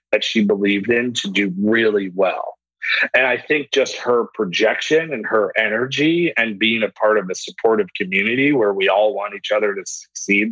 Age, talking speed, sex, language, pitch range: 40-59, 190 wpm, male, English, 100-135 Hz